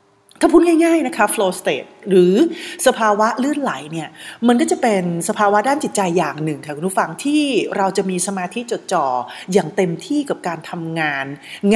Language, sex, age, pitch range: Thai, female, 30-49, 170-255 Hz